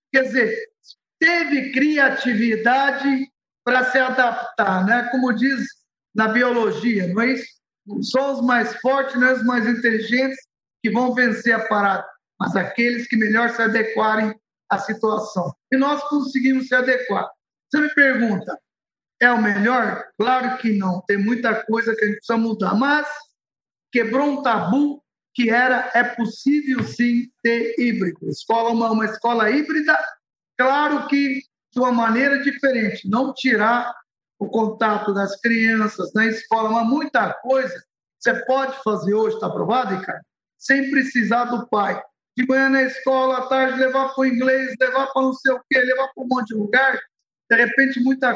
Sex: male